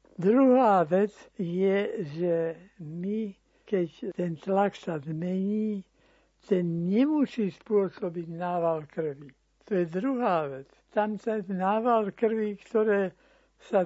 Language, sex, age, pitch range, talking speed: Slovak, male, 60-79, 170-205 Hz, 110 wpm